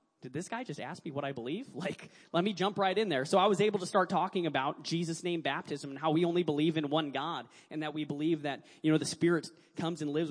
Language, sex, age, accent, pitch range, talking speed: English, male, 20-39, American, 150-180 Hz, 275 wpm